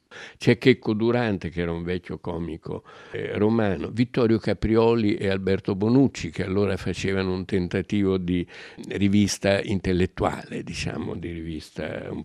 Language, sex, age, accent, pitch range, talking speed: Italian, male, 60-79, native, 90-105 Hz, 130 wpm